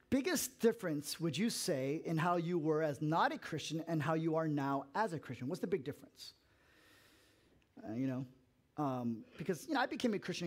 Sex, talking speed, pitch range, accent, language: male, 205 wpm, 145-215 Hz, American, English